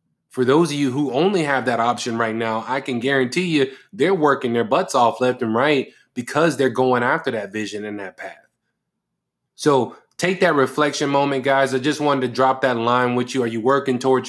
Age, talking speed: 20-39, 215 wpm